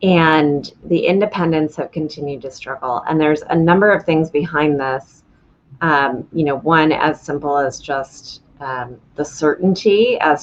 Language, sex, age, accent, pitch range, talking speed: English, female, 30-49, American, 140-165 Hz, 155 wpm